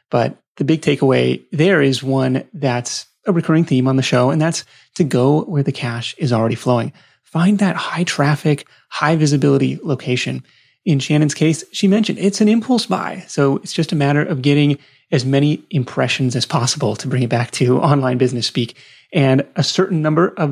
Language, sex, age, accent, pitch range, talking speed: English, male, 30-49, American, 130-165 Hz, 190 wpm